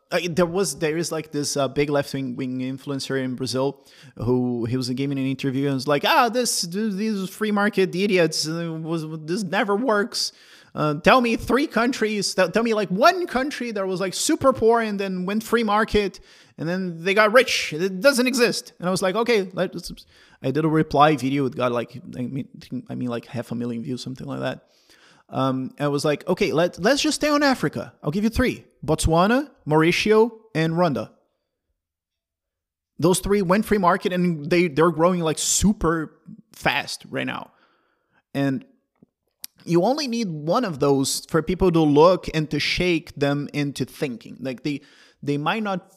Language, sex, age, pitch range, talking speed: English, male, 20-39, 140-200 Hz, 185 wpm